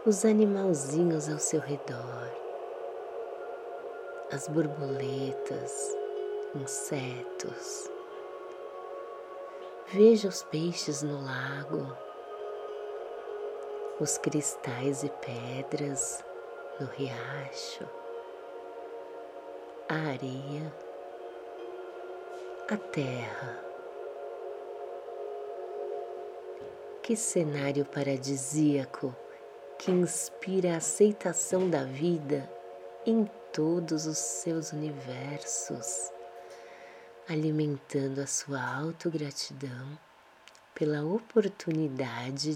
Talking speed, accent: 60 wpm, Brazilian